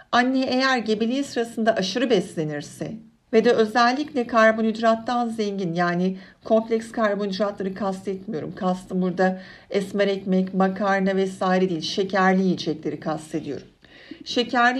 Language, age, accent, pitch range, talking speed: Turkish, 60-79, native, 185-225 Hz, 105 wpm